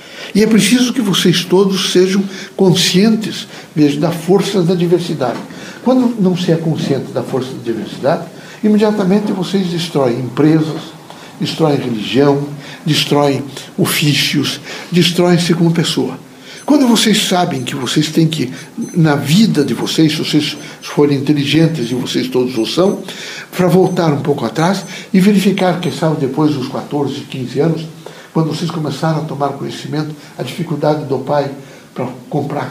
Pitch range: 145-185 Hz